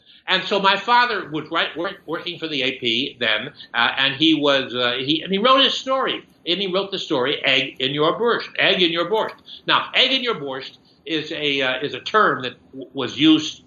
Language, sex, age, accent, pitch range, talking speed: English, male, 60-79, American, 135-190 Hz, 185 wpm